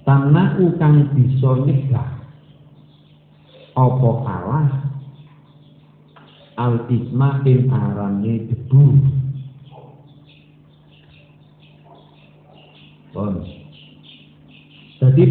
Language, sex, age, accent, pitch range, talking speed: Indonesian, male, 50-69, native, 130-150 Hz, 45 wpm